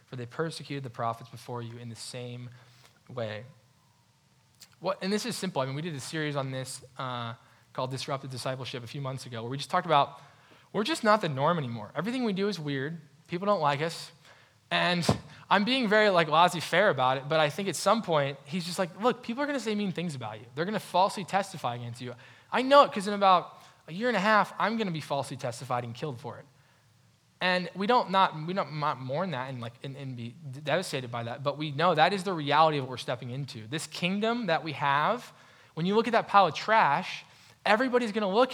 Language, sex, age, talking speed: English, male, 10-29, 240 wpm